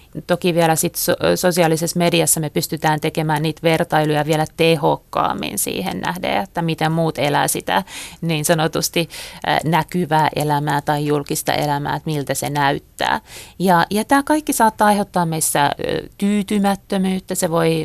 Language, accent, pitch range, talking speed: Finnish, native, 155-185 Hz, 135 wpm